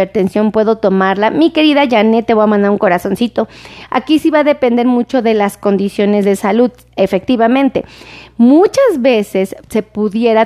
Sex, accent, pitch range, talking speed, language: female, Mexican, 195-245 Hz, 155 wpm, Spanish